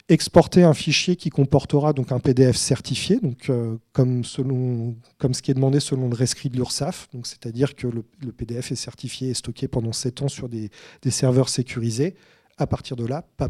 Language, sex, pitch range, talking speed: French, male, 120-145 Hz, 200 wpm